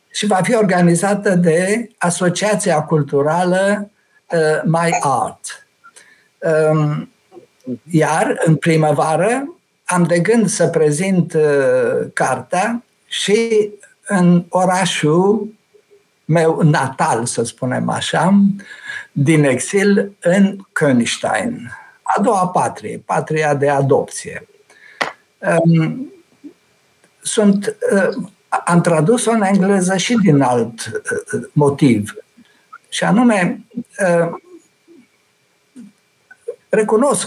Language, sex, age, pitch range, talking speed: Romanian, male, 60-79, 155-220 Hz, 75 wpm